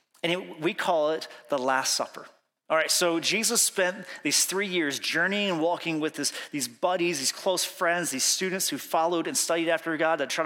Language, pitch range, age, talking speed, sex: English, 160-195 Hz, 30-49, 200 wpm, male